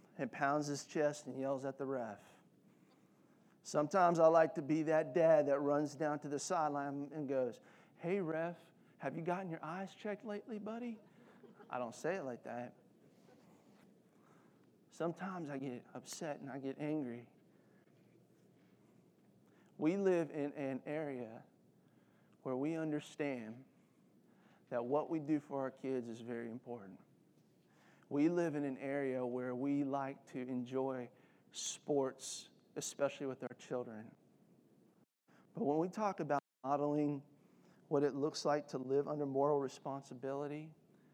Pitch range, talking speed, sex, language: 135-160 Hz, 140 wpm, male, English